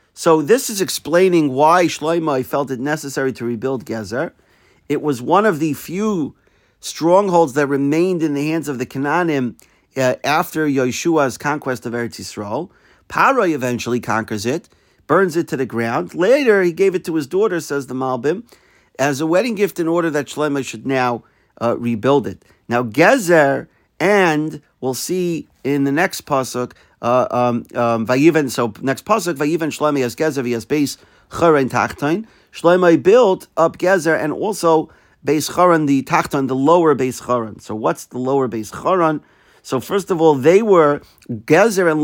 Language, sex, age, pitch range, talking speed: English, male, 50-69, 125-160 Hz, 155 wpm